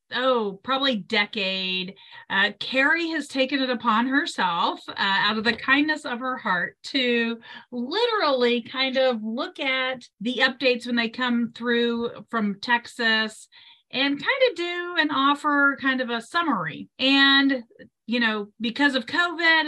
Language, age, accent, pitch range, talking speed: English, 40-59, American, 230-295 Hz, 145 wpm